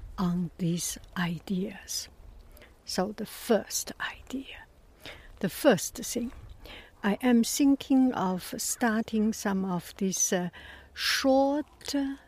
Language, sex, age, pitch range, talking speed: English, female, 60-79, 180-240 Hz, 100 wpm